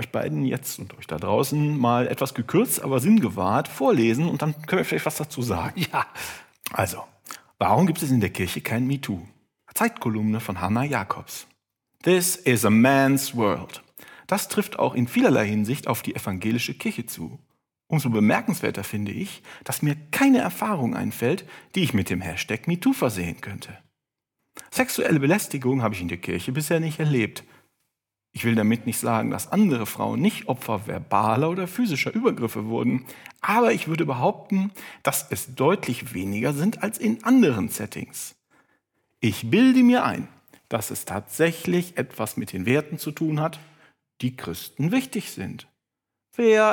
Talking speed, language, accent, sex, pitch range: 160 wpm, German, German, male, 110-175 Hz